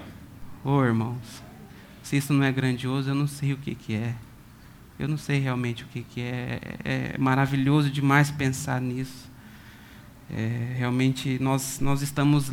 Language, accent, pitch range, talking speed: Portuguese, Brazilian, 120-140 Hz, 155 wpm